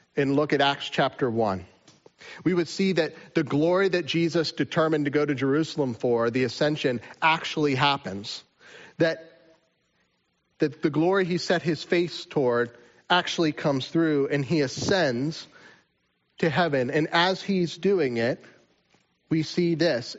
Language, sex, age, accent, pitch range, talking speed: English, male, 30-49, American, 135-170 Hz, 145 wpm